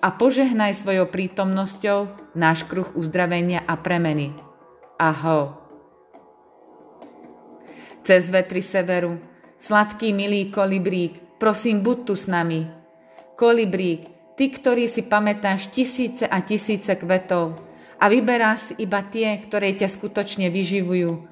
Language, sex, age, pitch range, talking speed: Slovak, female, 30-49, 170-205 Hz, 110 wpm